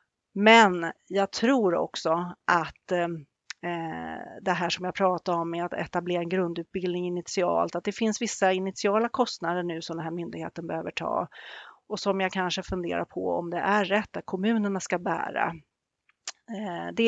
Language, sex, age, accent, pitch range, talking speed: Swedish, female, 40-59, native, 175-210 Hz, 160 wpm